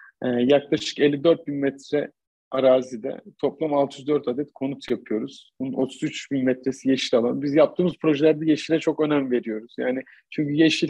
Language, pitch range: Turkish, 135-160 Hz